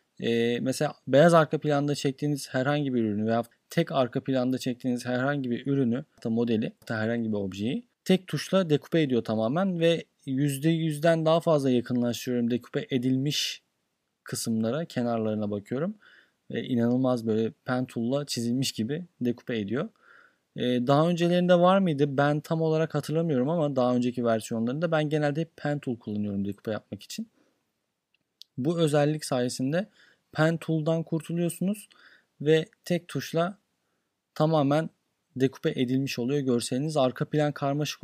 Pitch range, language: 120-155 Hz, Turkish